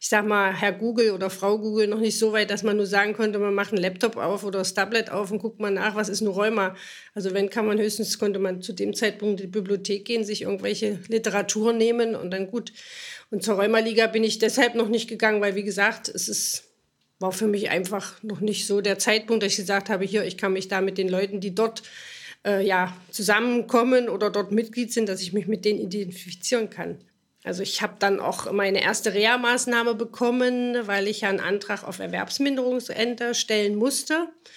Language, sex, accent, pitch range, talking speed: German, female, German, 200-235 Hz, 215 wpm